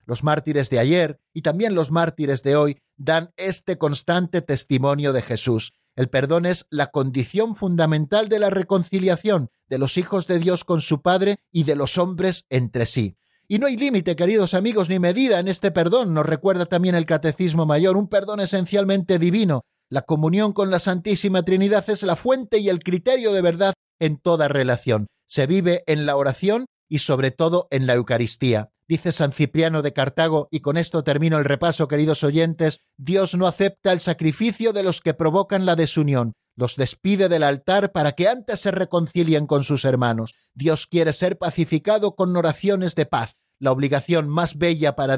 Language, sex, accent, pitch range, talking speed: Spanish, male, Spanish, 140-185 Hz, 180 wpm